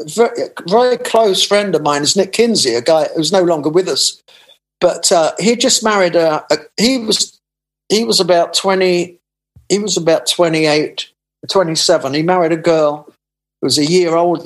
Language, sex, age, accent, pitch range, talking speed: English, male, 50-69, British, 150-200 Hz, 180 wpm